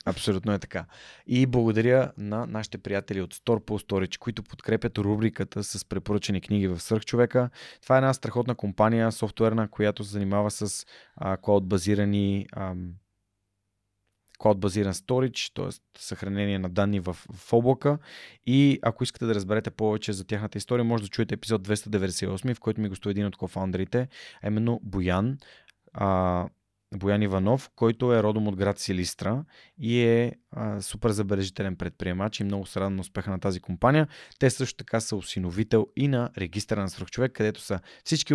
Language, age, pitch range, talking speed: Bulgarian, 20-39, 95-115 Hz, 160 wpm